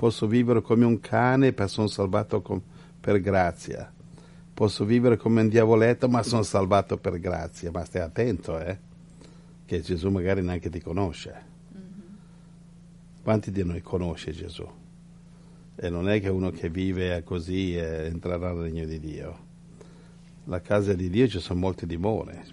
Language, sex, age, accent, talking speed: Italian, male, 50-69, native, 150 wpm